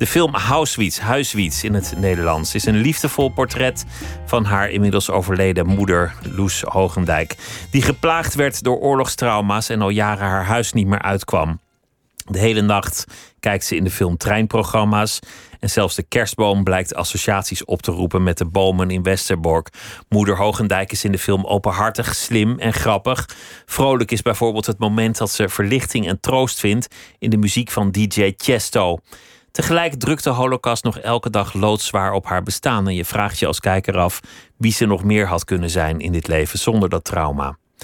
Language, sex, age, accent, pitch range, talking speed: Dutch, male, 30-49, Dutch, 95-120 Hz, 180 wpm